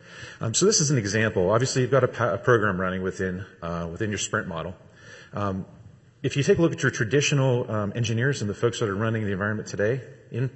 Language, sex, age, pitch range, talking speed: English, male, 40-59, 95-130 Hz, 235 wpm